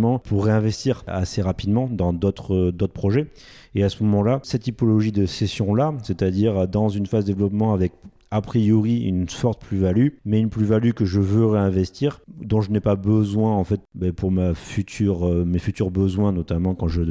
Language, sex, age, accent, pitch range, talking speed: French, male, 30-49, French, 95-110 Hz, 175 wpm